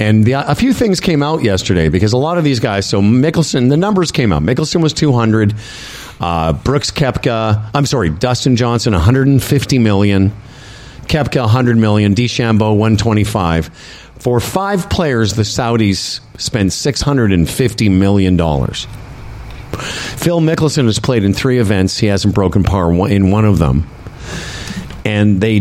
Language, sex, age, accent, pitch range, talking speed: English, male, 50-69, American, 95-130 Hz, 145 wpm